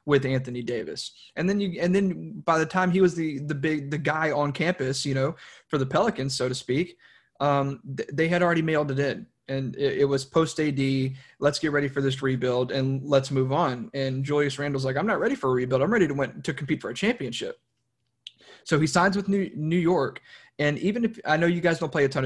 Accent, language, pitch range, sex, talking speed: American, English, 135-180 Hz, male, 240 wpm